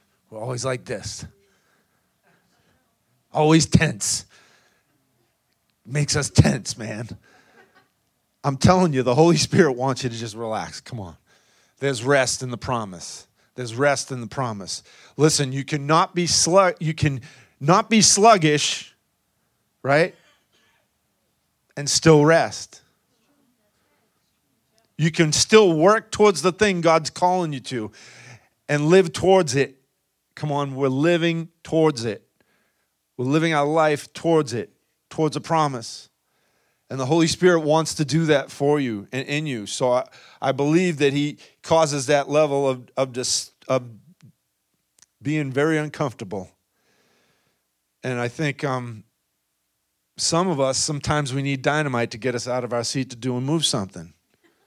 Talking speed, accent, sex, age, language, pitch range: 140 wpm, American, male, 40-59, English, 125-160 Hz